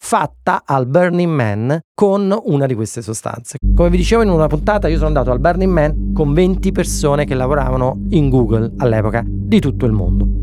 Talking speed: 190 wpm